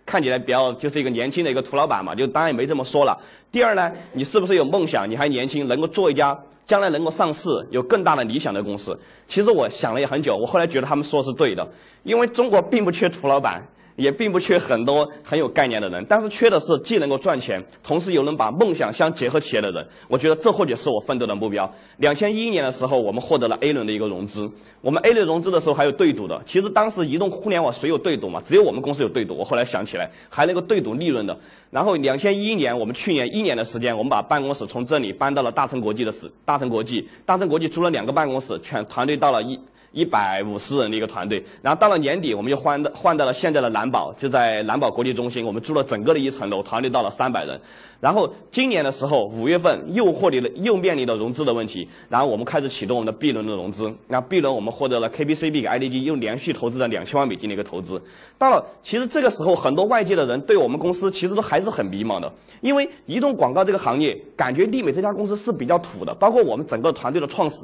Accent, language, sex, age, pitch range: native, Chinese, male, 30-49, 120-195 Hz